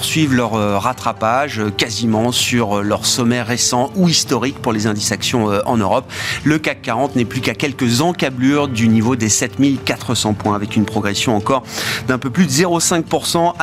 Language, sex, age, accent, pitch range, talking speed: French, male, 40-59, French, 115-150 Hz, 165 wpm